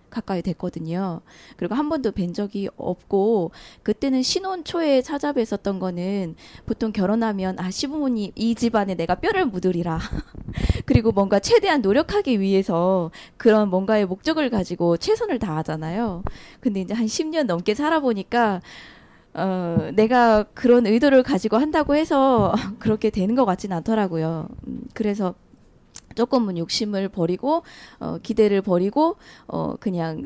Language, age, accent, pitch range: Korean, 20-39, native, 185-250 Hz